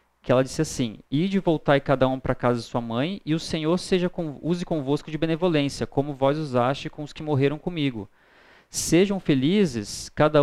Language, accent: Portuguese, Brazilian